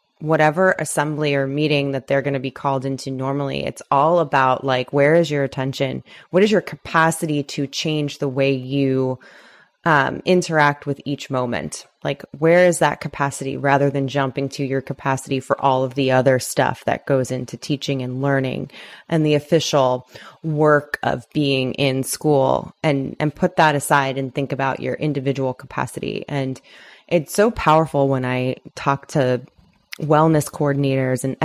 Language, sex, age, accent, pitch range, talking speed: English, female, 20-39, American, 135-155 Hz, 165 wpm